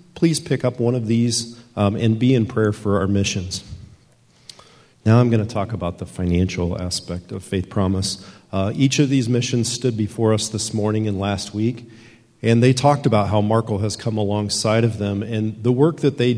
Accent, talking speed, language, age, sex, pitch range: American, 200 wpm, English, 40-59, male, 105-120 Hz